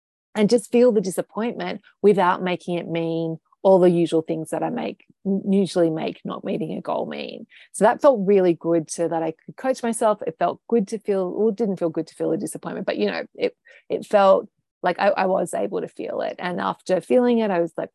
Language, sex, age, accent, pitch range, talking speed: English, female, 30-49, Australian, 170-225 Hz, 230 wpm